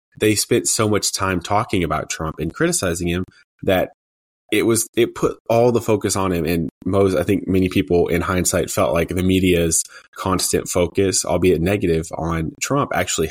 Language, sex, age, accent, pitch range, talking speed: English, male, 20-39, American, 85-105 Hz, 180 wpm